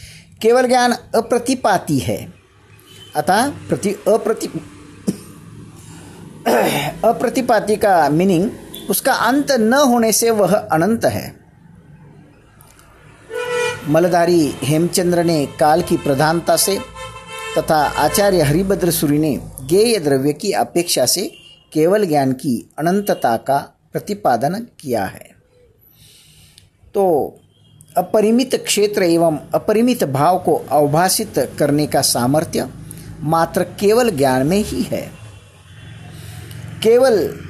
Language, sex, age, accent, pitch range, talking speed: Hindi, male, 50-69, native, 145-210 Hz, 100 wpm